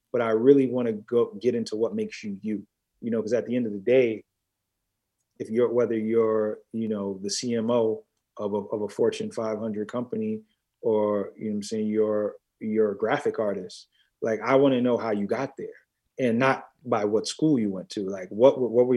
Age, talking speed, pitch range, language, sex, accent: 30-49, 215 wpm, 105-125 Hz, English, male, American